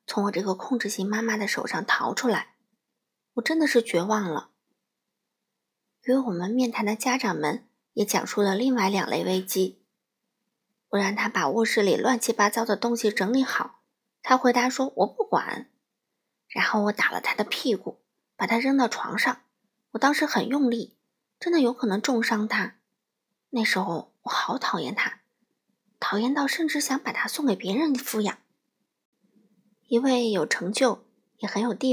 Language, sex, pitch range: Chinese, female, 205-245 Hz